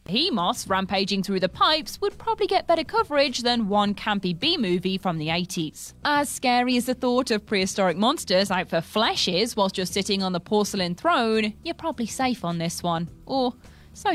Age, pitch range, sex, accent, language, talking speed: 20-39, 185-255 Hz, female, British, English, 185 wpm